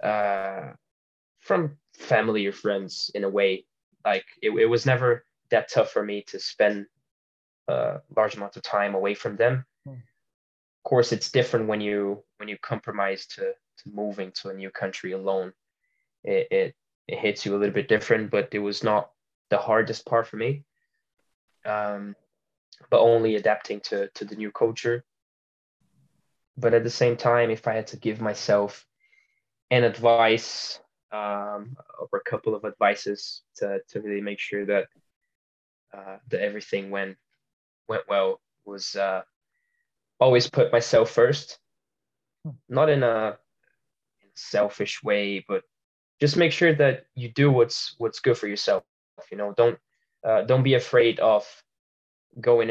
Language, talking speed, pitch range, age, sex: English, 155 wpm, 100-130 Hz, 10-29, male